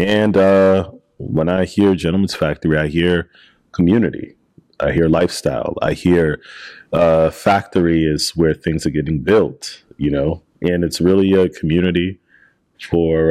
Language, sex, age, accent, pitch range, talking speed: English, male, 30-49, American, 80-90 Hz, 140 wpm